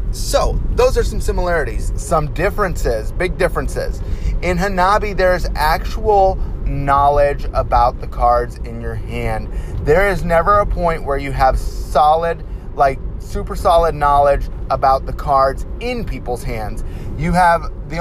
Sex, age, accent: male, 30-49, American